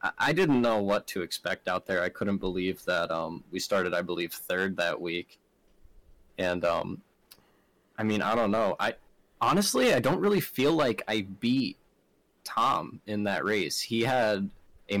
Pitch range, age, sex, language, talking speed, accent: 90-115 Hz, 20-39, male, English, 170 wpm, American